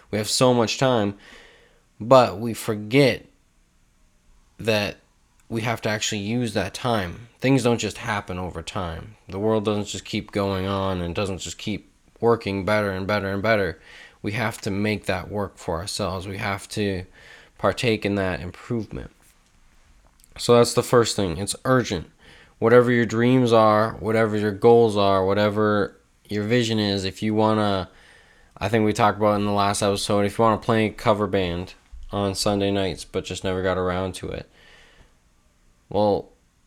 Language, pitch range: English, 95-115 Hz